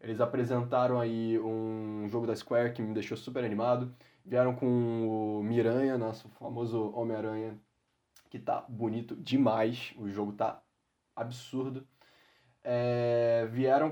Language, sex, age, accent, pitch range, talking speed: Portuguese, male, 10-29, Brazilian, 110-130 Hz, 120 wpm